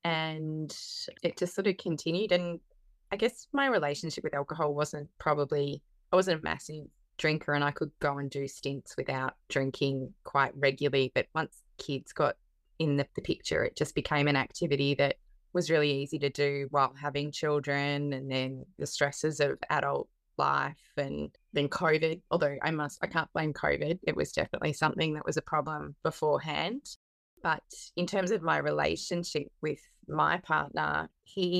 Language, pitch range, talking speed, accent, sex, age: English, 140-165 Hz, 170 wpm, Australian, female, 20-39